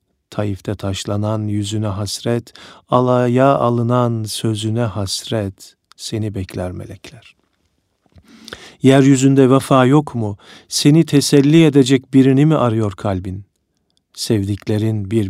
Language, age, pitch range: Turkish, 50-69, 100-135 Hz